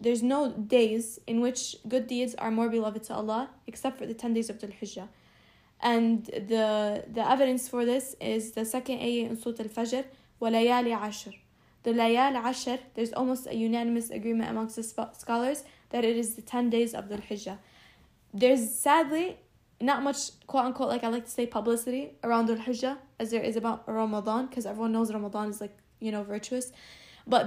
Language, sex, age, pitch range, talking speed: English, female, 10-29, 225-260 Hz, 175 wpm